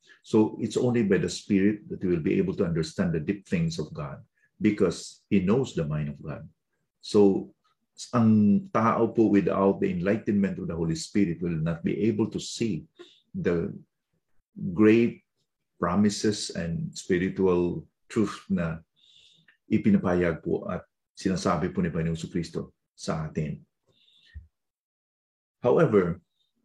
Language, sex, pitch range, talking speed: English, male, 85-110 Hz, 135 wpm